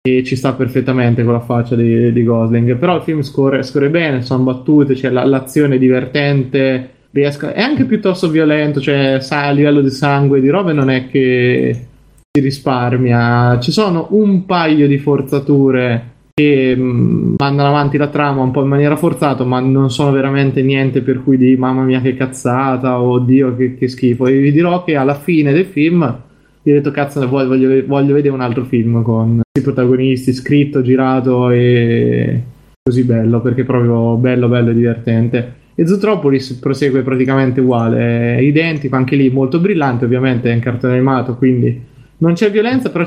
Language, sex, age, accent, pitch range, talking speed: Italian, male, 20-39, native, 125-145 Hz, 180 wpm